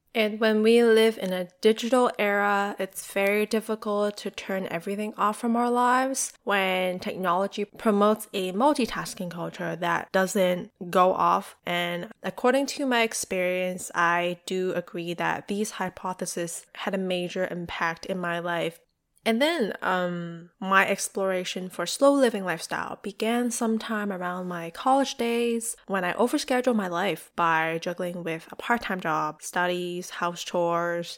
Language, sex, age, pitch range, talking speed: English, female, 20-39, 175-210 Hz, 145 wpm